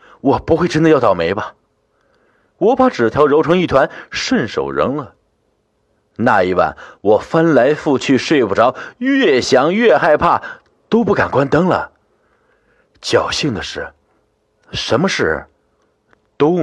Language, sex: Chinese, male